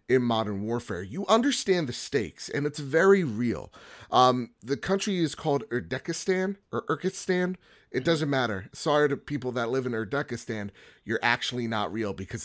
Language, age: English, 30-49